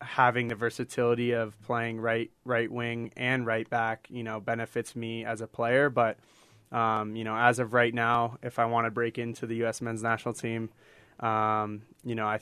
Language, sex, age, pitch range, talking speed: English, male, 20-39, 110-120 Hz, 200 wpm